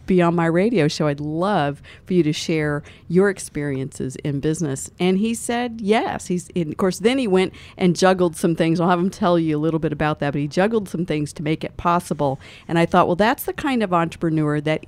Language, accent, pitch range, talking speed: English, American, 150-190 Hz, 235 wpm